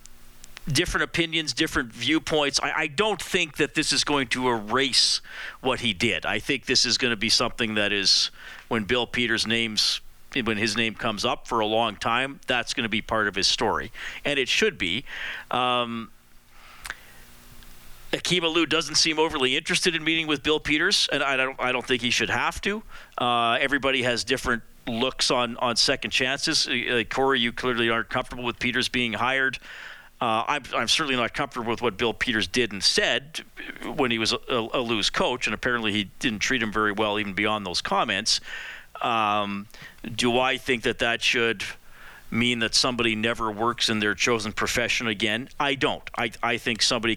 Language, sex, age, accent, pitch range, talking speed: English, male, 40-59, American, 110-135 Hz, 190 wpm